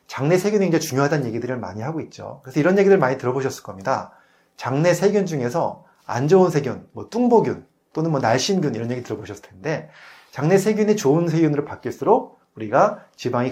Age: 30-49